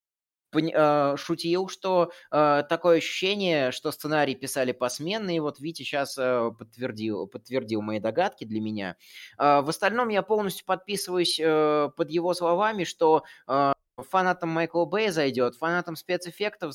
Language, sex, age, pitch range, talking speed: Russian, male, 20-39, 120-165 Hz, 135 wpm